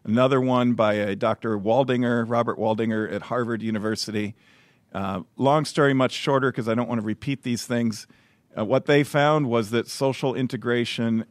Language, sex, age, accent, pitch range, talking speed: English, male, 50-69, American, 115-135 Hz, 170 wpm